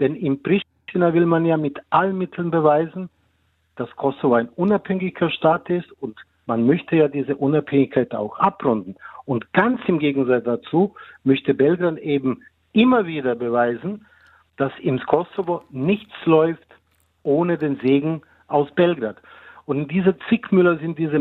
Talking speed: 140 wpm